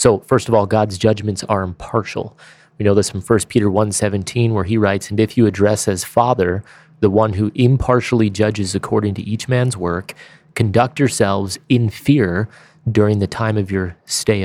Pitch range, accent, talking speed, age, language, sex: 100-115 Hz, American, 185 wpm, 30-49, English, male